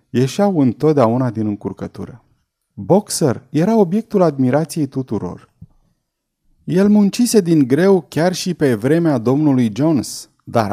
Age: 30-49